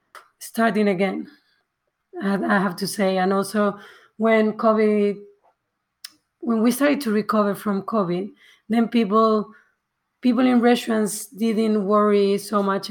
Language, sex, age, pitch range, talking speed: English, female, 30-49, 195-225 Hz, 120 wpm